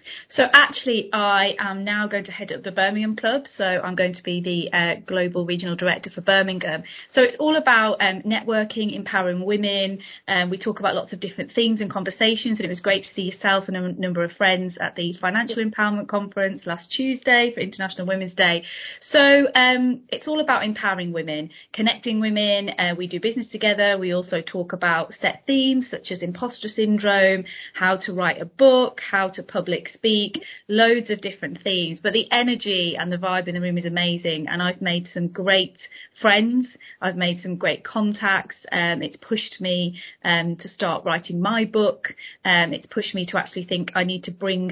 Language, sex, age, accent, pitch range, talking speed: English, female, 30-49, British, 180-210 Hz, 195 wpm